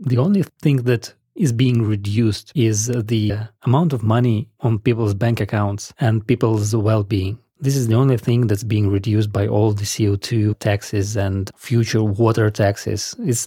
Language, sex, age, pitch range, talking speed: English, male, 30-49, 105-130 Hz, 165 wpm